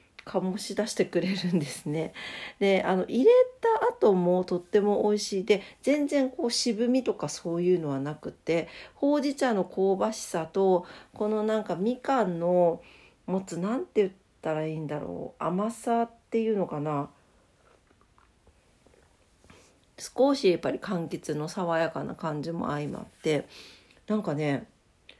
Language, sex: Japanese, female